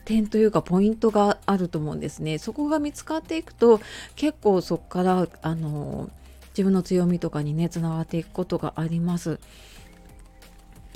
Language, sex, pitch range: Japanese, female, 165-220 Hz